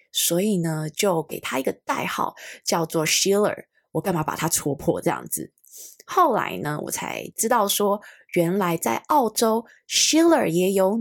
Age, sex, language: 20-39, female, Chinese